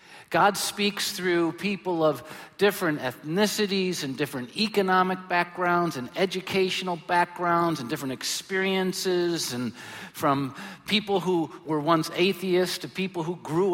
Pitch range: 140-180 Hz